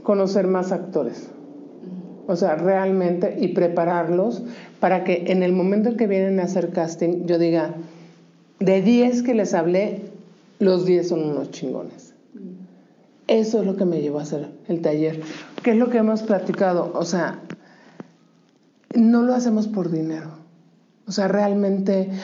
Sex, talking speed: male, 155 wpm